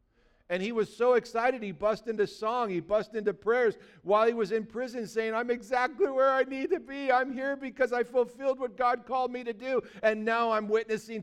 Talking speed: 220 wpm